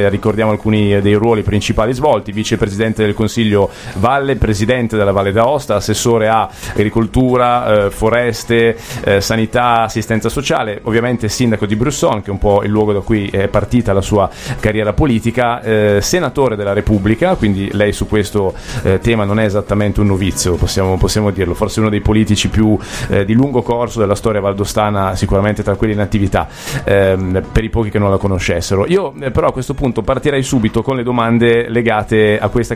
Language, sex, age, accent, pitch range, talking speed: Italian, male, 30-49, native, 105-120 Hz, 180 wpm